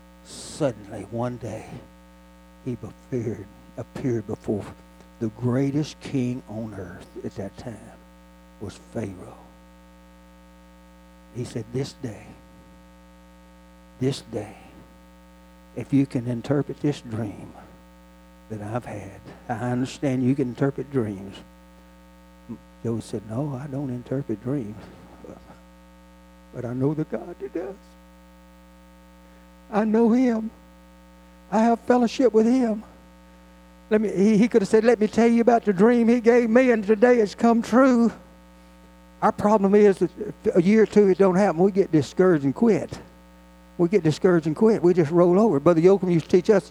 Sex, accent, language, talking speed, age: male, American, English, 145 wpm, 60-79